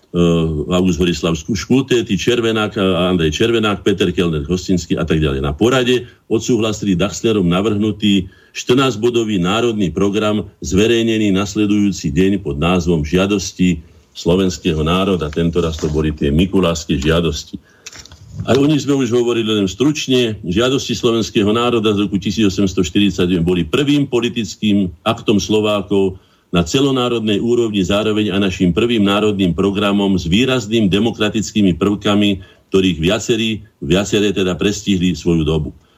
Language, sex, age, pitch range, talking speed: Slovak, male, 50-69, 90-110 Hz, 125 wpm